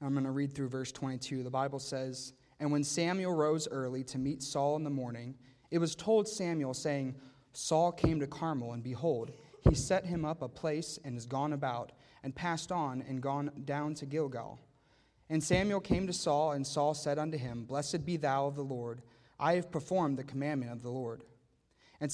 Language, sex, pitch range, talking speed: English, male, 130-155 Hz, 205 wpm